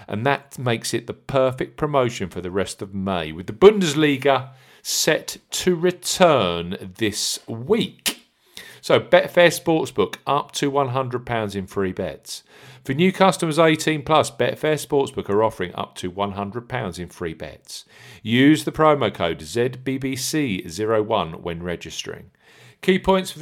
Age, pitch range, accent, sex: 50-69, 95-145 Hz, British, male